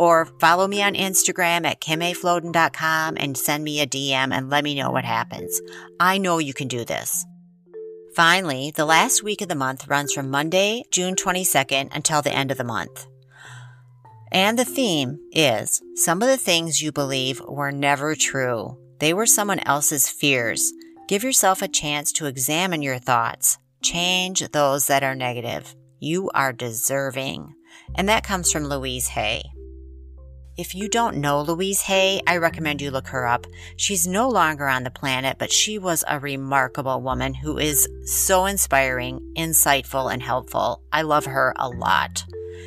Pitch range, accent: 130-180 Hz, American